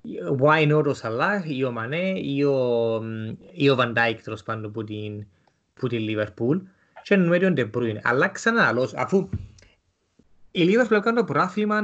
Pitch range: 115-165 Hz